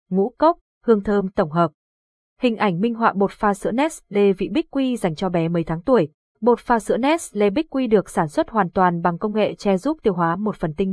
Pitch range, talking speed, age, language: 190-245 Hz, 240 wpm, 20-39, Vietnamese